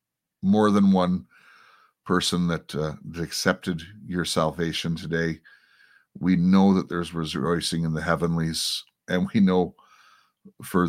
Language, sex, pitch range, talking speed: English, male, 80-90 Hz, 125 wpm